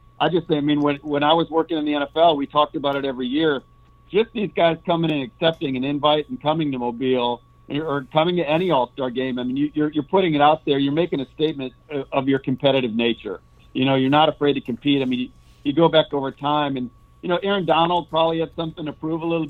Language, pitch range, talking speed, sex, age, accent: English, 130-155 Hz, 250 wpm, male, 50-69, American